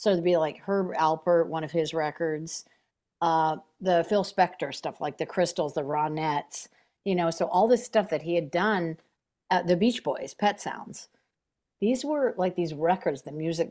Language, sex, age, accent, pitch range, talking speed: English, female, 50-69, American, 160-195 Hz, 190 wpm